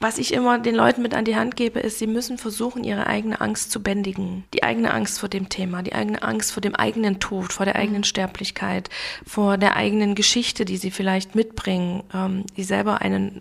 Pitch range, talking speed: 190-230 Hz, 210 wpm